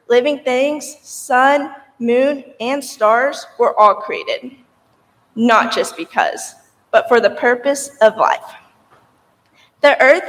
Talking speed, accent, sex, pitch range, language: 115 wpm, American, female, 215-270 Hz, English